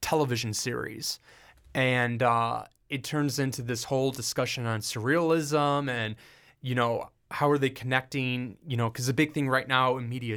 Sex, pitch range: male, 115-140 Hz